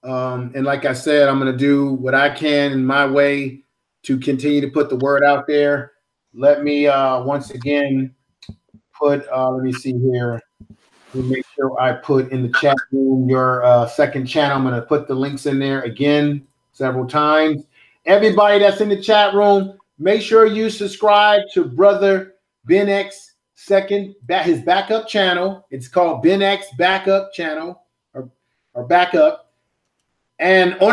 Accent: American